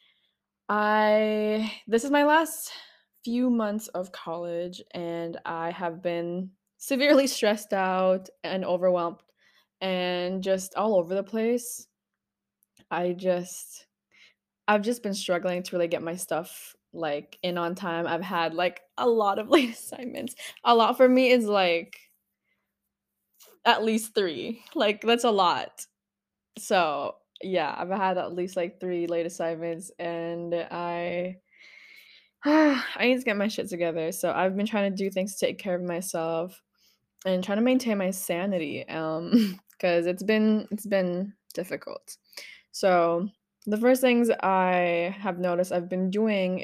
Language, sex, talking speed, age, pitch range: English, female, 145 wpm, 20-39, 175-215 Hz